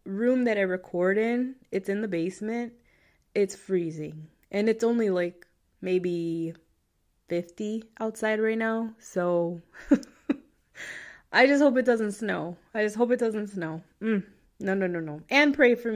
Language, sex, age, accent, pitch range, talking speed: English, female, 20-39, American, 190-255 Hz, 155 wpm